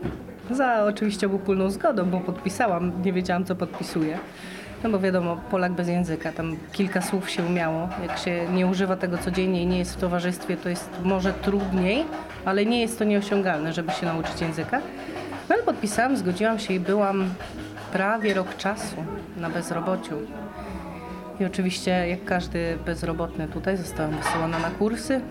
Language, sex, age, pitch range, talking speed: Polish, female, 20-39, 170-195 Hz, 160 wpm